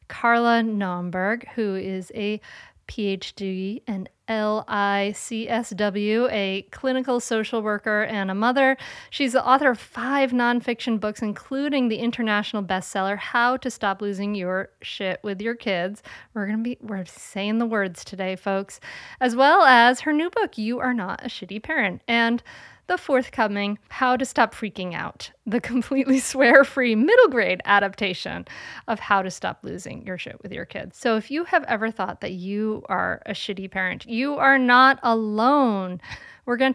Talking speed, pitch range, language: 160 wpm, 200-260 Hz, English